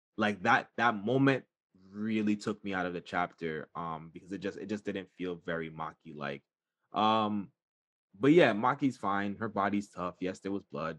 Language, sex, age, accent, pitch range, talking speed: English, male, 20-39, American, 100-140 Hz, 185 wpm